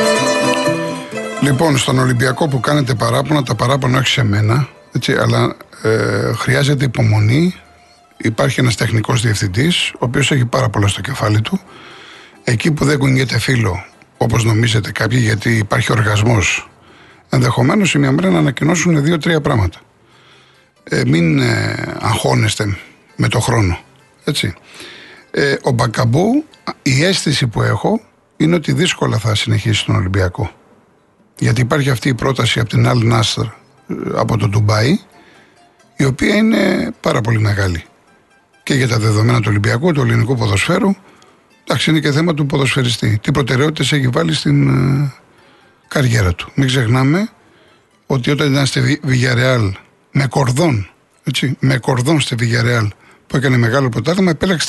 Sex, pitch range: male, 115-150 Hz